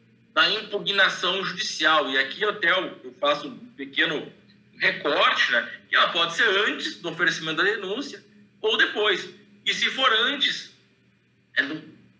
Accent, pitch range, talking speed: Brazilian, 145-215 Hz, 135 wpm